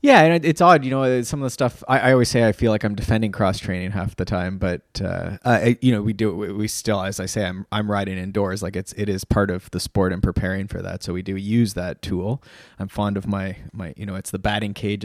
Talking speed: 275 wpm